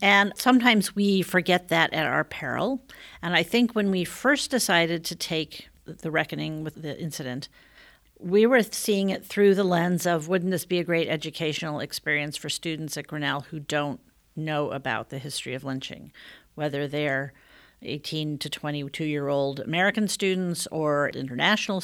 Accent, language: American, English